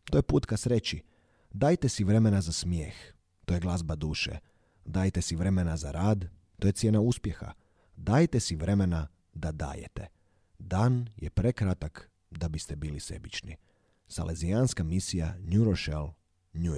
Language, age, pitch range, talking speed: Croatian, 30-49, 85-105 Hz, 145 wpm